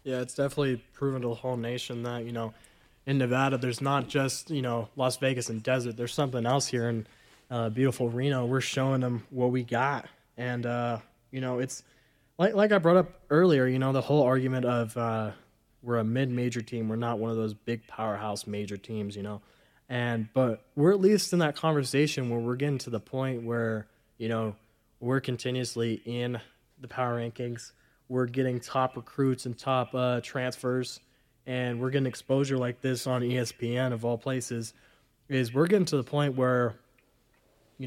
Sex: male